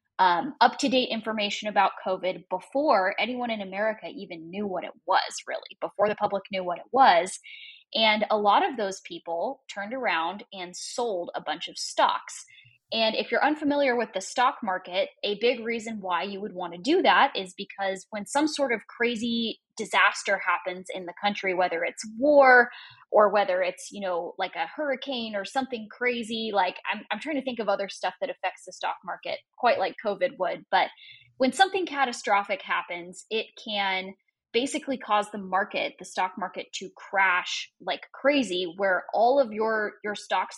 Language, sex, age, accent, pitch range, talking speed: English, female, 10-29, American, 190-250 Hz, 185 wpm